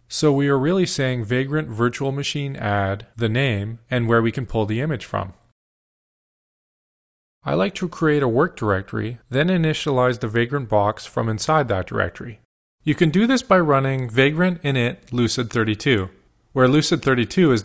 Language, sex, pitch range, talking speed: English, male, 110-145 Hz, 160 wpm